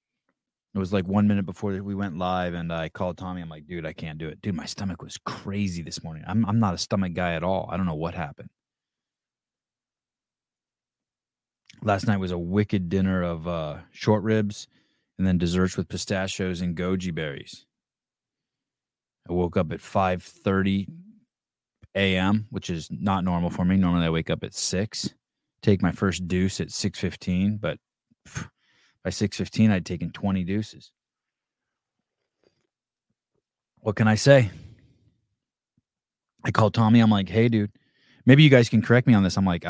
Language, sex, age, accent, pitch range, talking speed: English, male, 20-39, American, 90-115 Hz, 170 wpm